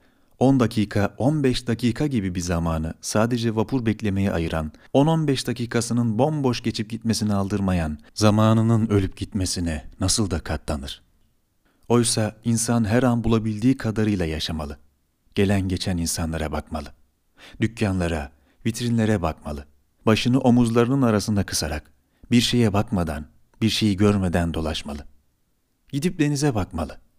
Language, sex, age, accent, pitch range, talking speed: Turkish, male, 40-59, native, 85-120 Hz, 115 wpm